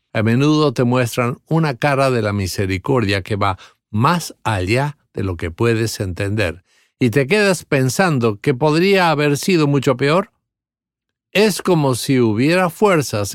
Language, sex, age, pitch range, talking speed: English, male, 50-69, 110-150 Hz, 150 wpm